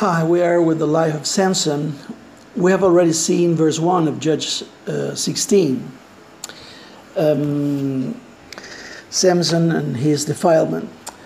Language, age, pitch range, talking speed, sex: Spanish, 50-69, 155-185 Hz, 130 wpm, male